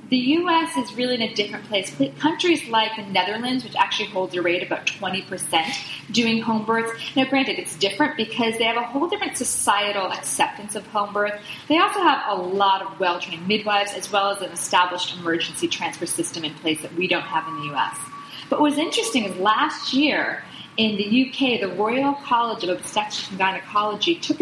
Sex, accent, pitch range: female, American, 200-260 Hz